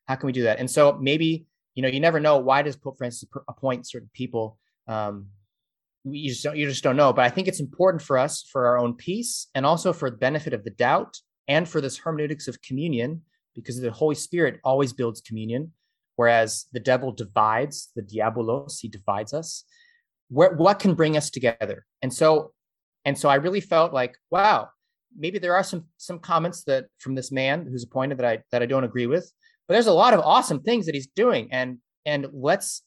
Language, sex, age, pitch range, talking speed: English, male, 30-49, 125-165 Hz, 210 wpm